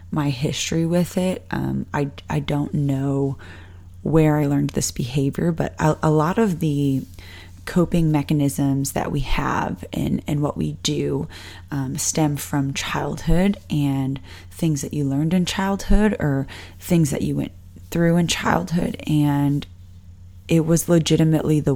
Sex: female